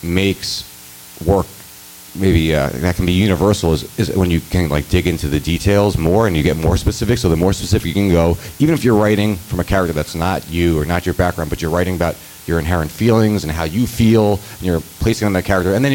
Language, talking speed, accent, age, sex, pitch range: English, 245 wpm, American, 30-49, male, 85-105 Hz